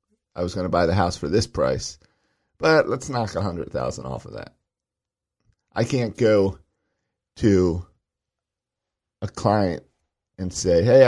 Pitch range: 85-105 Hz